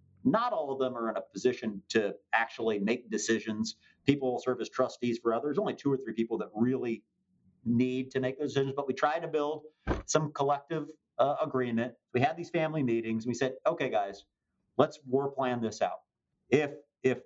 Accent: American